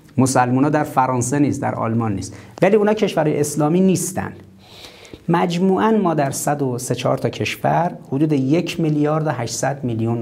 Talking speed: 145 wpm